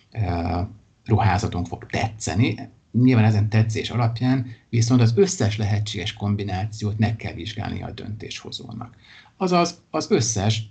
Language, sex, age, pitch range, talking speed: Hungarian, male, 50-69, 105-120 Hz, 110 wpm